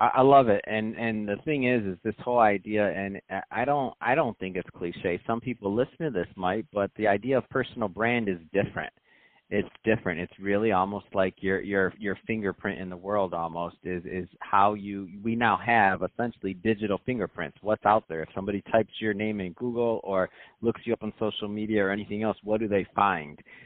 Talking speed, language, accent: 210 wpm, English, American